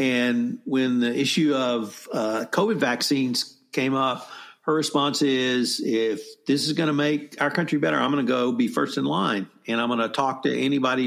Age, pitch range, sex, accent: 50-69, 125-155 Hz, male, American